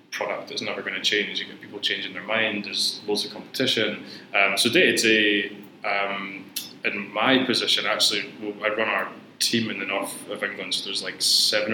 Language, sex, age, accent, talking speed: English, male, 20-39, British, 195 wpm